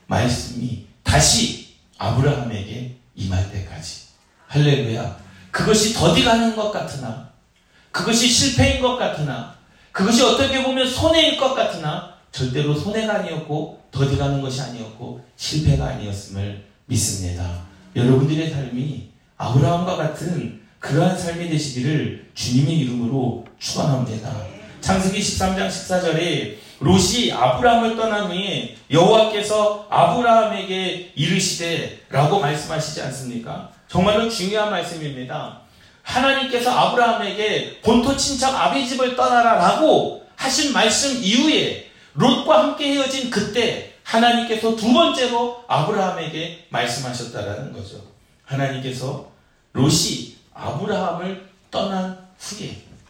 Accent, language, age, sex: native, Korean, 40-59, male